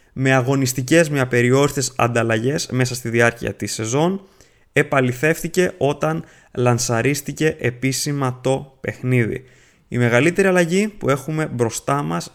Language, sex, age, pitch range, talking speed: Greek, male, 20-39, 120-155 Hz, 110 wpm